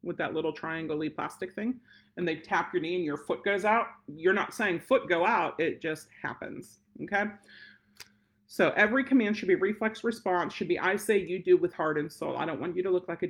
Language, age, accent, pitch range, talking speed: English, 40-59, American, 165-215 Hz, 230 wpm